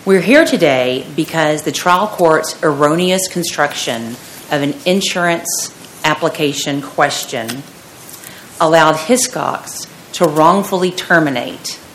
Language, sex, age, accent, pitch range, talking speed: English, female, 40-59, American, 135-170 Hz, 95 wpm